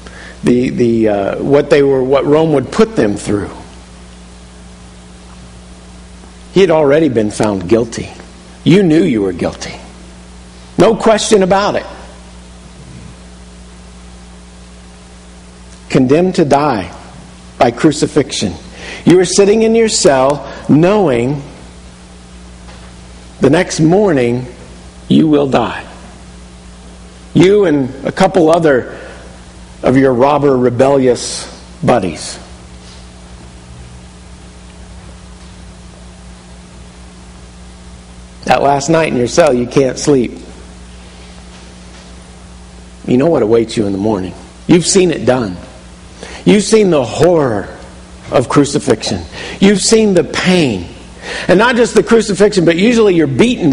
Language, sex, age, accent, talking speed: English, male, 50-69, American, 105 wpm